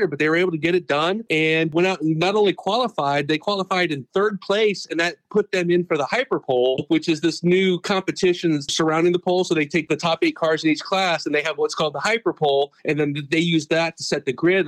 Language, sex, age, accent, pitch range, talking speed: English, male, 40-59, American, 155-190 Hz, 260 wpm